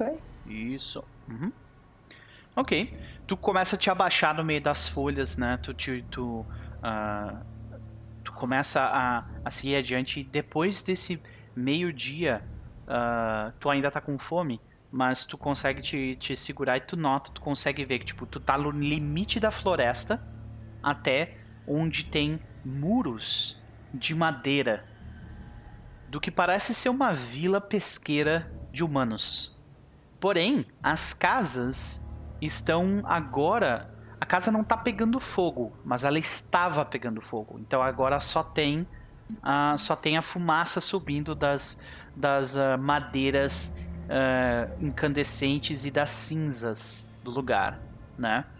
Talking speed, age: 125 wpm, 30-49